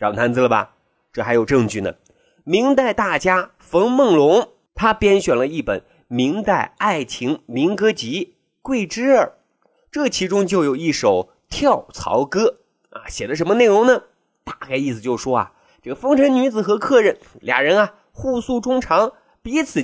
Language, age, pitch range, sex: Chinese, 30-49, 185-285 Hz, male